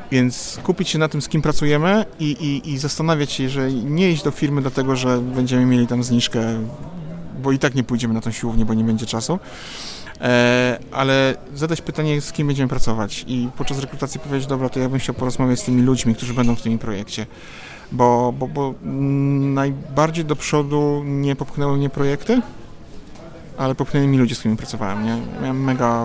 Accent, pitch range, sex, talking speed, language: native, 120-145 Hz, male, 190 wpm, Polish